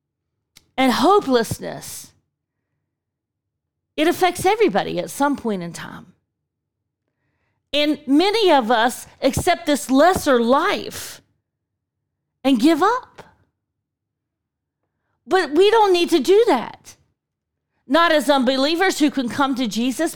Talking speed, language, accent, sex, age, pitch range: 105 wpm, English, American, female, 40-59, 265-380 Hz